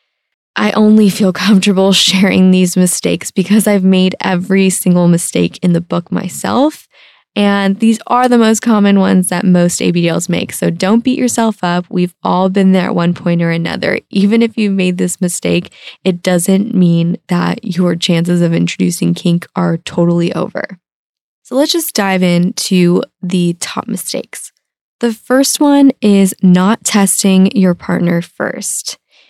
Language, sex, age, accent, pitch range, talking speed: English, female, 20-39, American, 175-210 Hz, 160 wpm